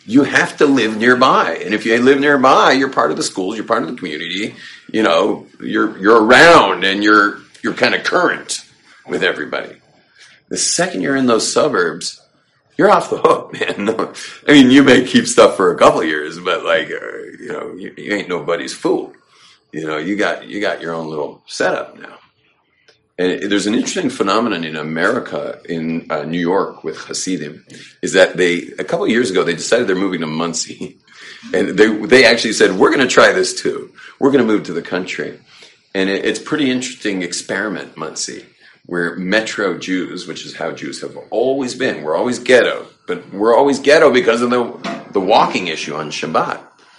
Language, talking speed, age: English, 195 wpm, 40-59